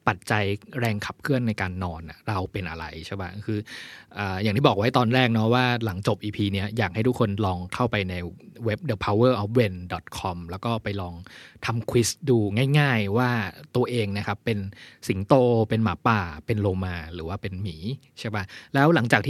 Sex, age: male, 20-39